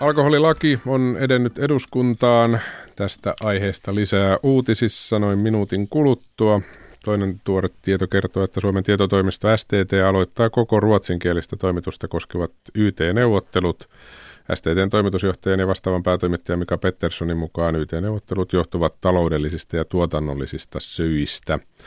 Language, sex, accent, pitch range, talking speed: Finnish, male, native, 85-105 Hz, 105 wpm